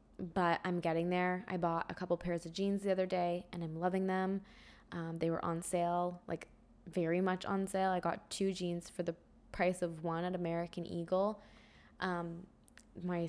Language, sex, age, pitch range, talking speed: English, female, 10-29, 165-185 Hz, 190 wpm